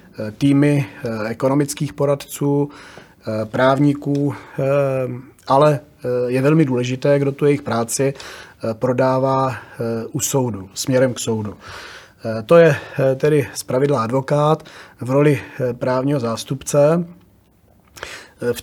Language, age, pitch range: Czech, 30-49, 120-145 Hz